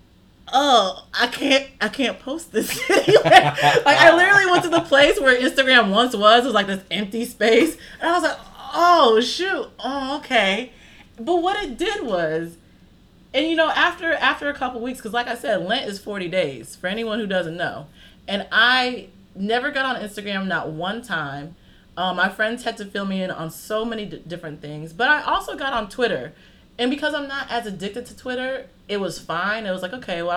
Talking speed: 205 wpm